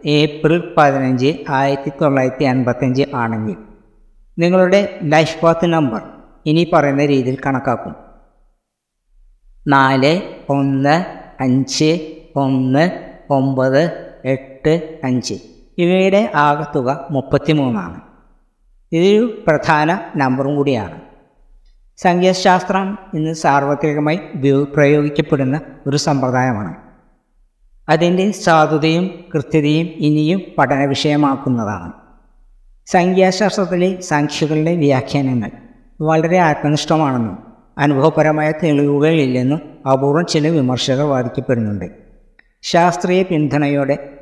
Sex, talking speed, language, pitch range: female, 70 wpm, Malayalam, 135-160 Hz